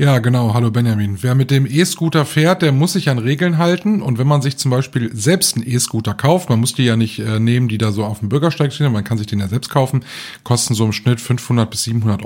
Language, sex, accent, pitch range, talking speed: German, male, German, 115-150 Hz, 260 wpm